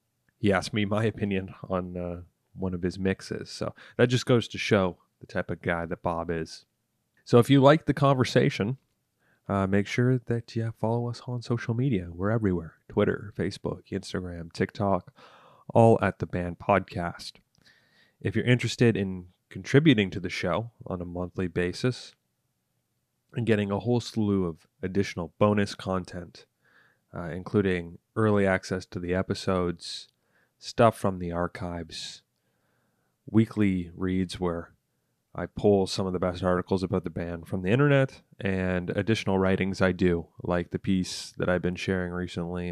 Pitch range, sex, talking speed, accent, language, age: 90-110 Hz, male, 155 wpm, American, English, 30-49